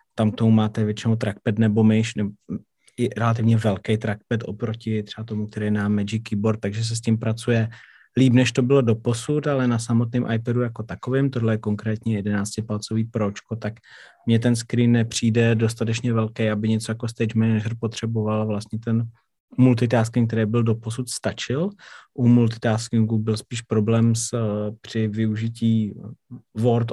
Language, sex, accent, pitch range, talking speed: Czech, male, native, 105-115 Hz, 160 wpm